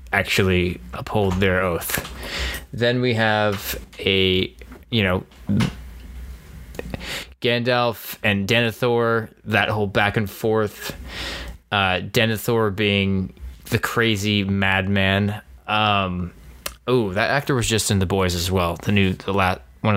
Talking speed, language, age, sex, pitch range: 120 wpm, English, 20-39, male, 85-105 Hz